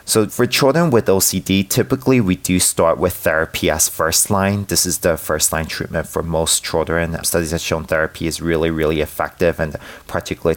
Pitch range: 80-95 Hz